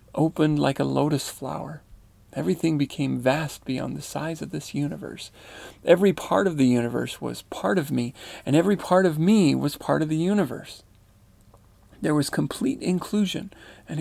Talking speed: 165 wpm